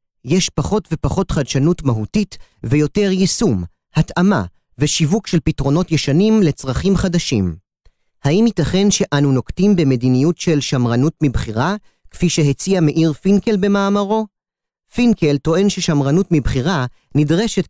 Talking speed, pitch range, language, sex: 110 wpm, 140-190 Hz, Hebrew, male